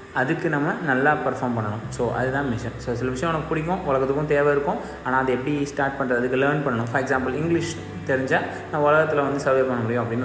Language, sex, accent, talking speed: Tamil, male, native, 200 wpm